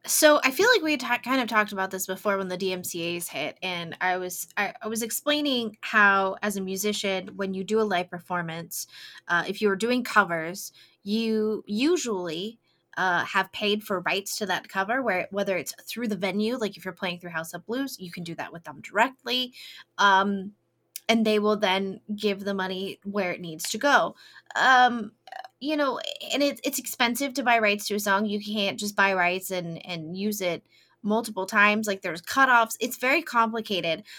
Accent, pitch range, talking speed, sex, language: American, 190-245 Hz, 195 wpm, female, English